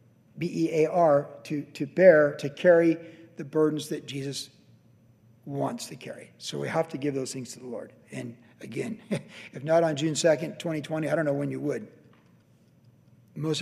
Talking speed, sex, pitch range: 165 wpm, male, 155-185 Hz